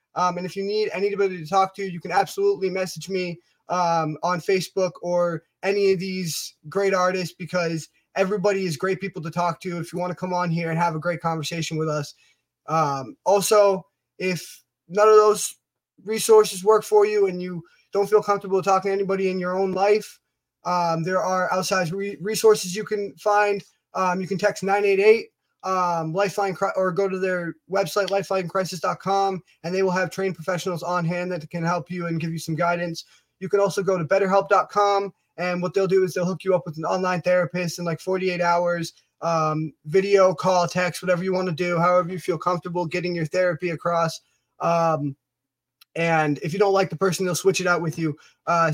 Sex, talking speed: male, 195 wpm